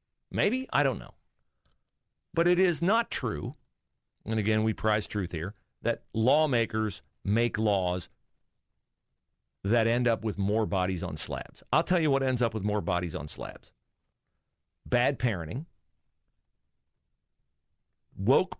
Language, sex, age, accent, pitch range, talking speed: English, male, 40-59, American, 100-130 Hz, 130 wpm